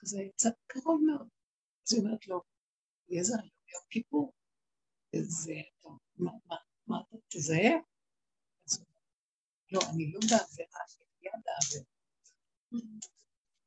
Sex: female